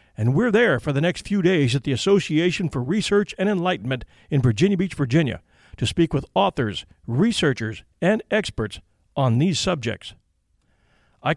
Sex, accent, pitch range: male, American, 125-185 Hz